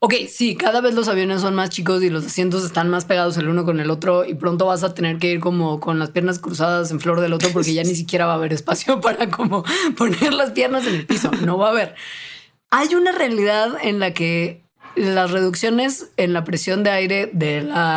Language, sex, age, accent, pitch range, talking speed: Spanish, female, 20-39, Mexican, 170-215 Hz, 235 wpm